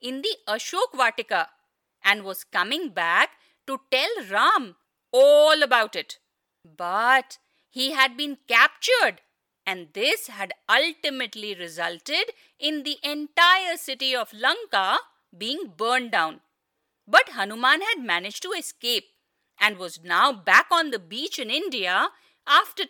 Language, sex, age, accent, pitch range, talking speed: English, female, 50-69, Indian, 210-300 Hz, 130 wpm